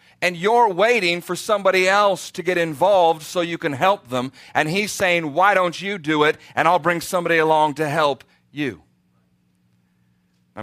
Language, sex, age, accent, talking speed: English, male, 40-59, American, 175 wpm